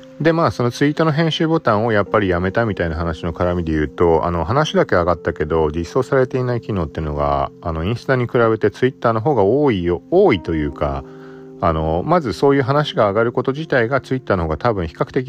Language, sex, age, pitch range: Japanese, male, 40-59, 80-130 Hz